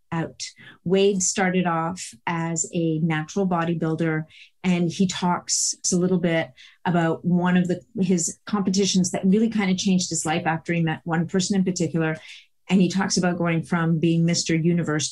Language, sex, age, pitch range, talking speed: English, female, 30-49, 165-195 Hz, 170 wpm